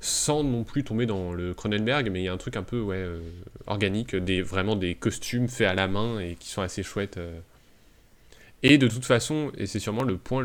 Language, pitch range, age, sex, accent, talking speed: French, 95-120 Hz, 20-39, male, French, 235 wpm